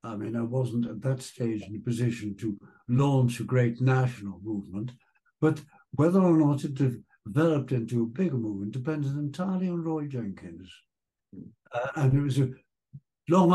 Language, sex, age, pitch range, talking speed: English, male, 60-79, 115-145 Hz, 165 wpm